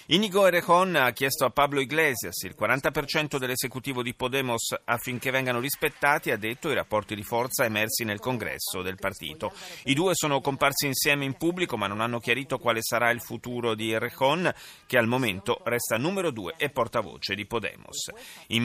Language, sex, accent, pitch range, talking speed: Italian, male, native, 110-155 Hz, 175 wpm